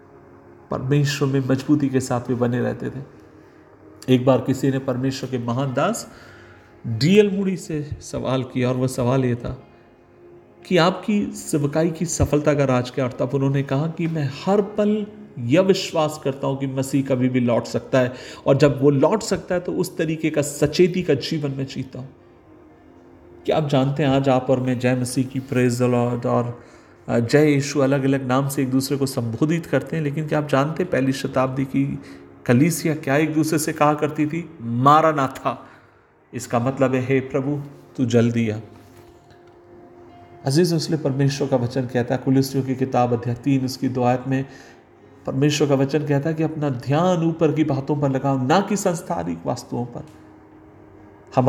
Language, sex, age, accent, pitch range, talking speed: Hindi, male, 40-59, native, 125-150 Hz, 170 wpm